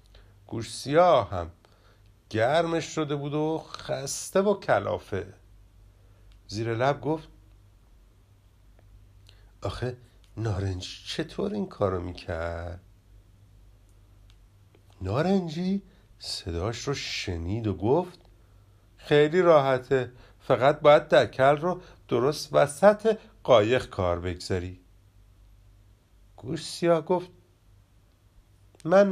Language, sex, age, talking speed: Persian, male, 50-69, 80 wpm